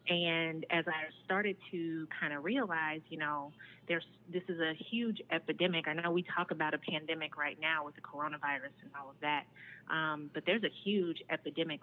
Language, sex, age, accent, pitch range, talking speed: English, female, 30-49, American, 150-170 Hz, 195 wpm